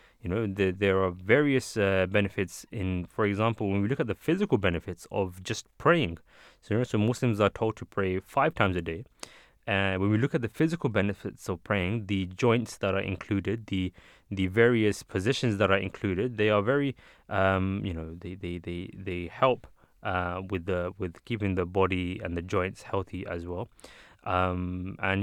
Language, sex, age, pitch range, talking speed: English, male, 20-39, 95-110 Hz, 195 wpm